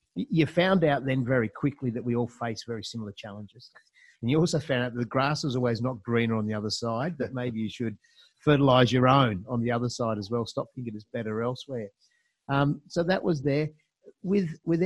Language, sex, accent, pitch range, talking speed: English, male, Australian, 115-135 Hz, 220 wpm